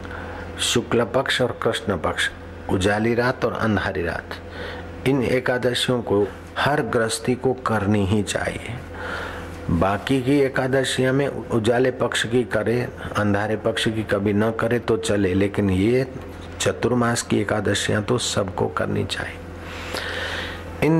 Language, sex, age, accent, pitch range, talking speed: Hindi, male, 60-79, native, 95-115 Hz, 130 wpm